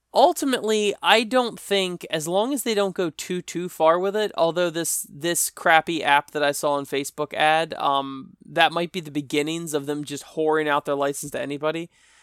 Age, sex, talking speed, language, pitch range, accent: 20-39, male, 200 wpm, English, 145-180 Hz, American